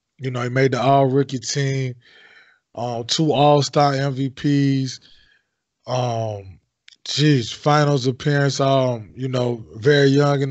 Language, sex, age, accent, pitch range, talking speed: English, male, 20-39, American, 125-145 Hz, 130 wpm